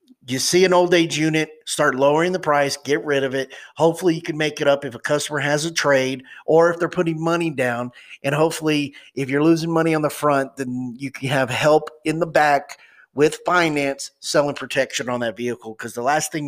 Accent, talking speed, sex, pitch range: American, 220 wpm, male, 130-165 Hz